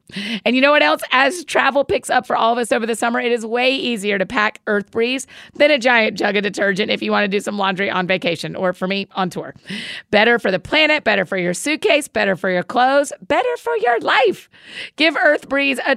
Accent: American